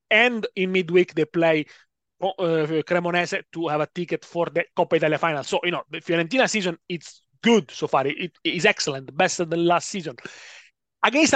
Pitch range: 160-200 Hz